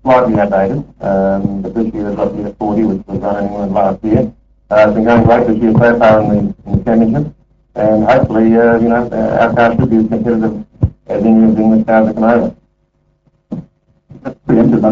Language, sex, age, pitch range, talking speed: English, male, 60-79, 105-115 Hz, 190 wpm